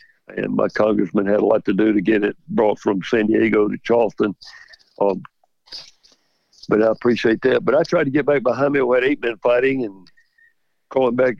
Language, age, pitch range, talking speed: English, 60-79, 115-135 Hz, 200 wpm